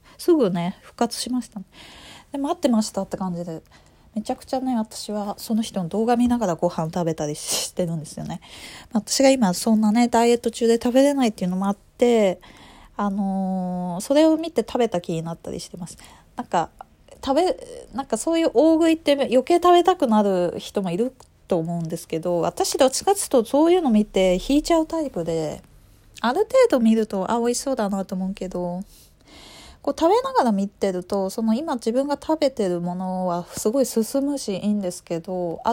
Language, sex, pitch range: Japanese, female, 180-265 Hz